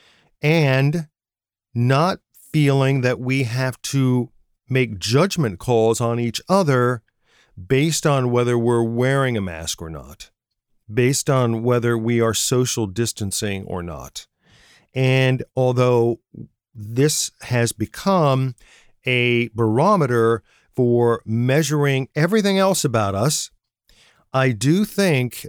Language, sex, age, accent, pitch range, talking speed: English, male, 40-59, American, 115-145 Hz, 110 wpm